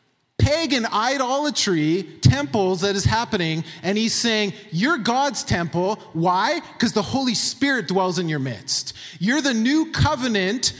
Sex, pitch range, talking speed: male, 150-235 Hz, 140 wpm